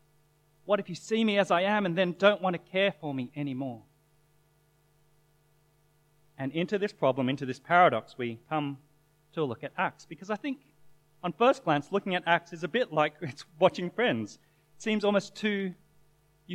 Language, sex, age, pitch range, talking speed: English, male, 30-49, 150-185 Hz, 185 wpm